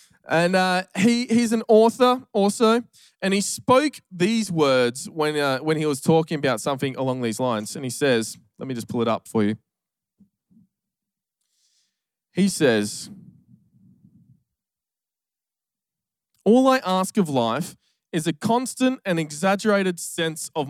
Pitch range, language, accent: 150-215 Hz, English, Australian